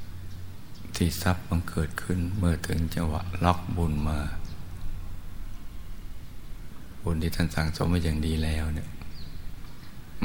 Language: Thai